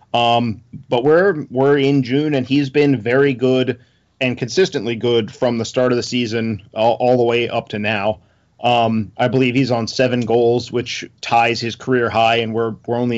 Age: 30-49